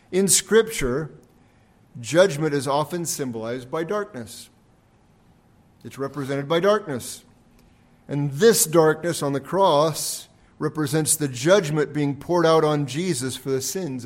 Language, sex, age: English, male, 50-69